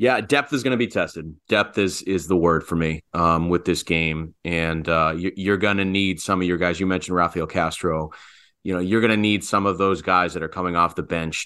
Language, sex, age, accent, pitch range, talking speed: English, male, 30-49, American, 85-105 Hz, 250 wpm